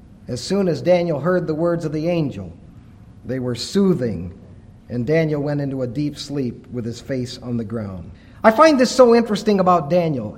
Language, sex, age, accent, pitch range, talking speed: English, male, 50-69, American, 135-185 Hz, 190 wpm